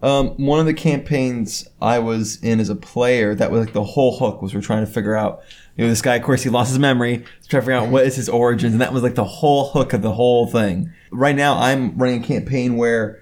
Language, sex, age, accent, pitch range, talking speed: English, male, 20-39, American, 110-135 Hz, 270 wpm